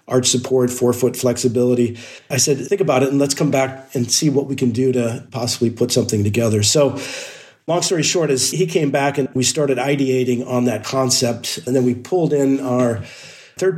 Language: English